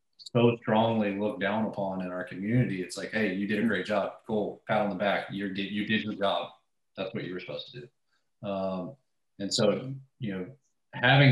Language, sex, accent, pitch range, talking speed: English, male, American, 100-120 Hz, 210 wpm